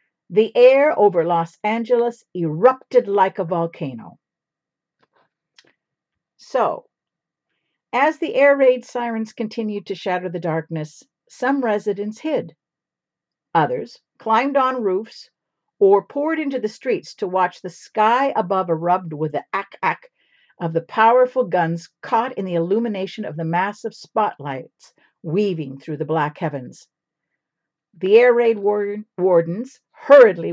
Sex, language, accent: female, English, American